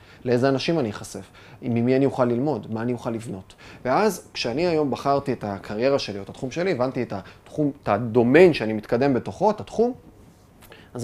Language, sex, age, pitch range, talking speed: Hebrew, male, 30-49, 110-145 Hz, 185 wpm